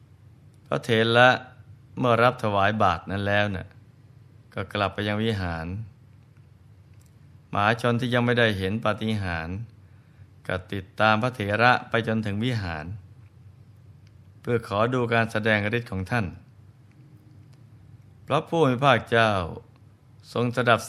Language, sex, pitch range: Thai, male, 100-120 Hz